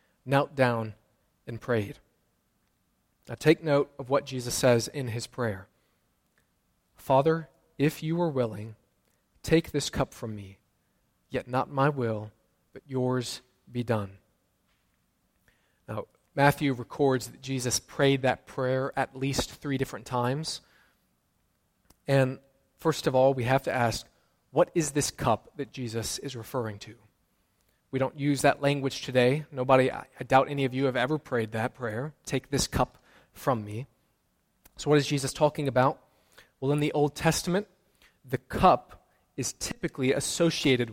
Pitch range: 120-145 Hz